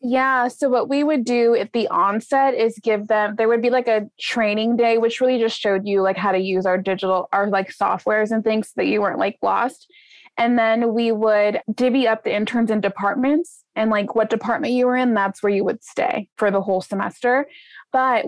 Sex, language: female, English